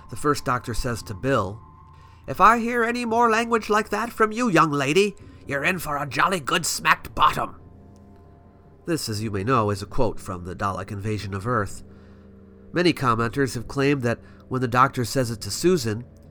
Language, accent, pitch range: English, American, 100-145 Hz